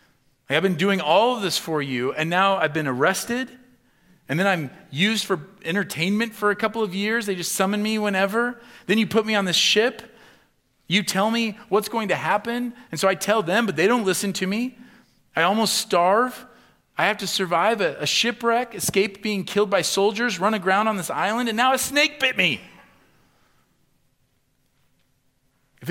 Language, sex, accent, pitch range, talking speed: English, male, American, 155-215 Hz, 190 wpm